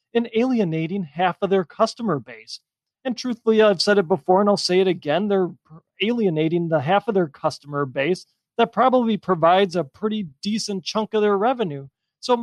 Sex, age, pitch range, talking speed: male, 40-59, 155-215 Hz, 185 wpm